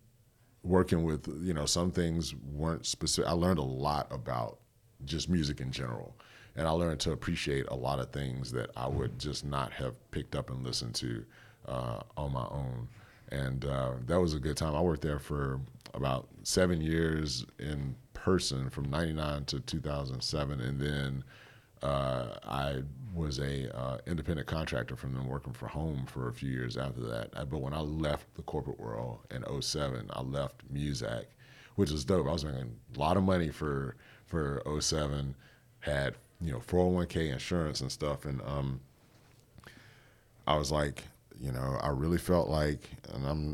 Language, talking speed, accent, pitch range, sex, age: English, 175 wpm, American, 65-80 Hz, male, 40-59